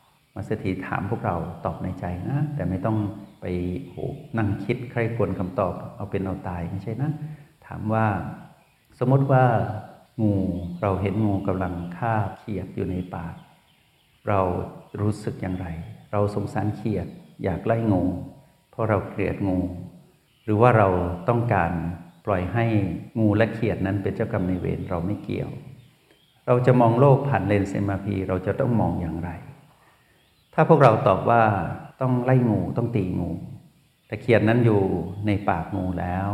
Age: 60-79